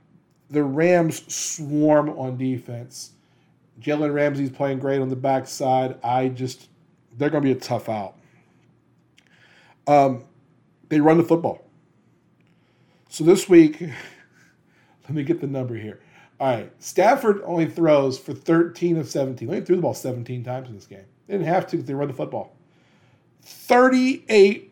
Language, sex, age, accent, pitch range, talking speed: English, male, 40-59, American, 135-170 Hz, 155 wpm